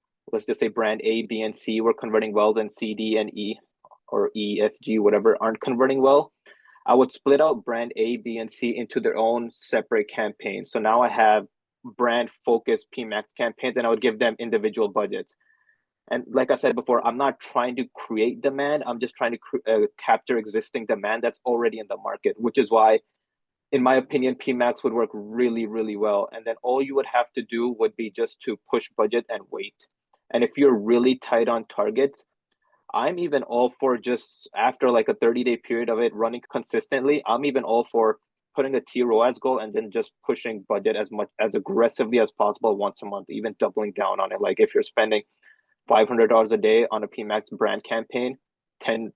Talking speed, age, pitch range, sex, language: 205 wpm, 30-49, 115-175 Hz, male, English